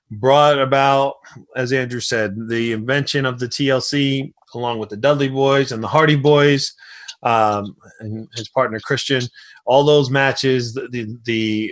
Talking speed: 155 wpm